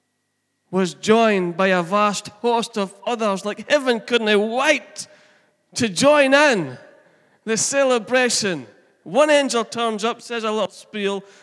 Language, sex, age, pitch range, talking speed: English, male, 30-49, 180-250 Hz, 135 wpm